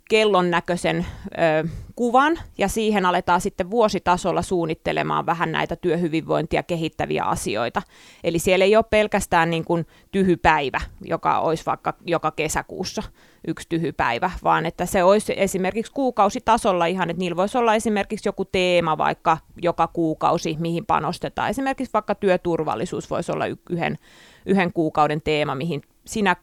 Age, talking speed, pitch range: 30-49, 140 wpm, 165-205 Hz